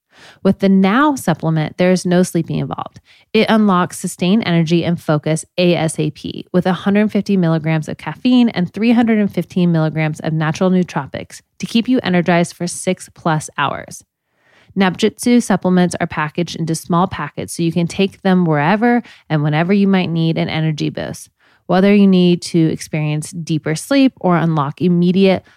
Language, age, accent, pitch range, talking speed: English, 20-39, American, 160-200 Hz, 155 wpm